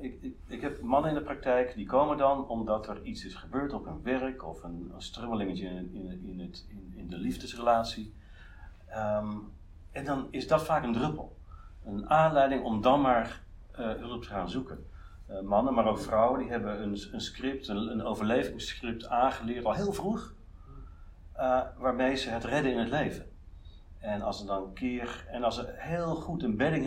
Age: 50-69